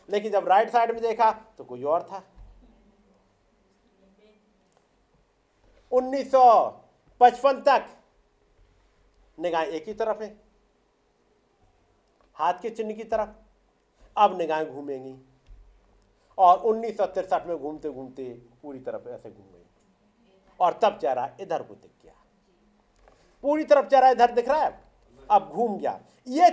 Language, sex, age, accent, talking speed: Hindi, male, 50-69, native, 120 wpm